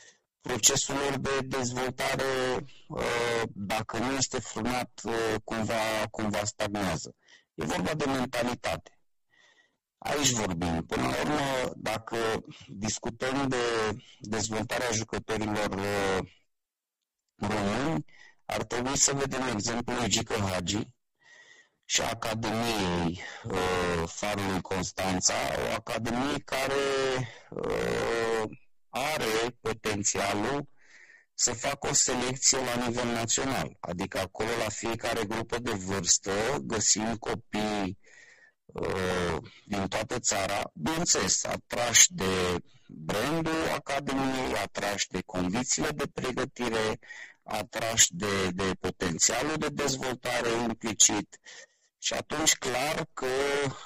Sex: male